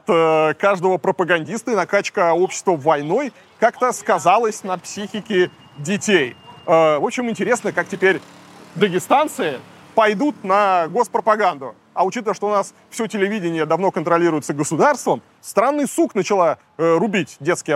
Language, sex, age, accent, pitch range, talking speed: Russian, male, 20-39, native, 160-220 Hz, 115 wpm